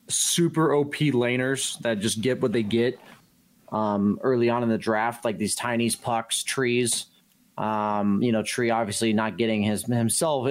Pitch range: 105-125 Hz